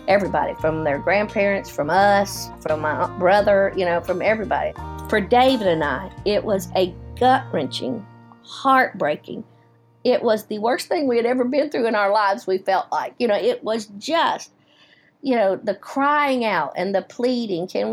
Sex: female